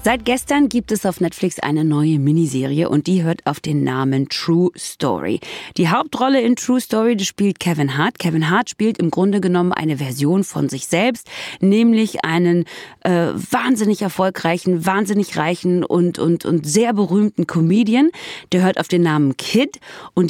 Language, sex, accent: German, female, German